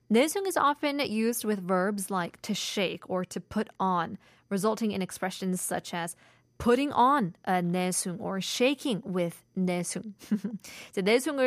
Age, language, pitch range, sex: 20-39, Korean, 185-240 Hz, female